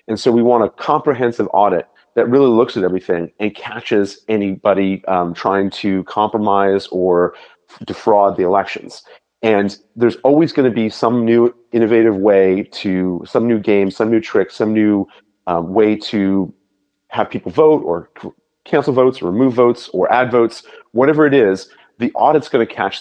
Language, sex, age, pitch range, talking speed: English, male, 30-49, 100-135 Hz, 170 wpm